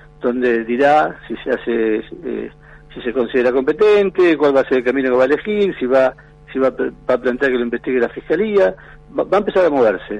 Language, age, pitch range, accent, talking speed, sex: Spanish, 50-69, 125-155 Hz, Argentinian, 230 wpm, male